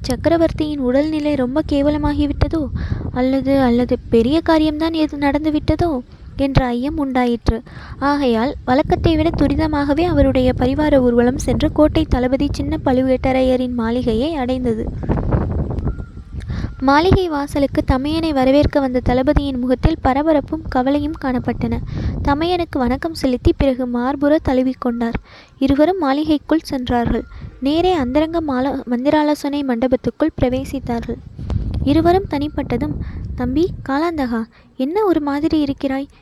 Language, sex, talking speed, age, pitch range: Tamil, female, 95 wpm, 20-39, 255-310 Hz